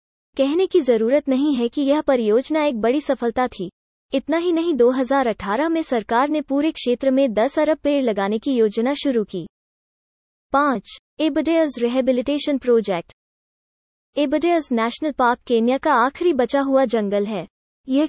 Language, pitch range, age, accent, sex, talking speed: English, 230-295 Hz, 20-39, Indian, female, 150 wpm